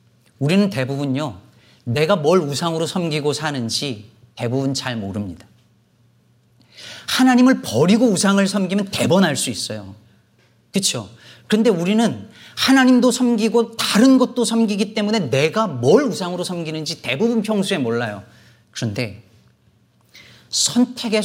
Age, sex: 40-59, male